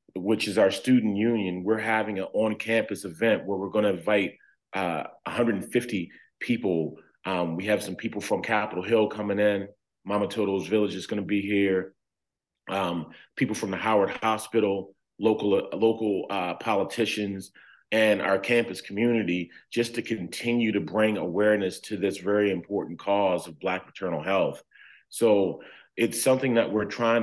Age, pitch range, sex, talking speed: 30-49, 95-110 Hz, male, 155 wpm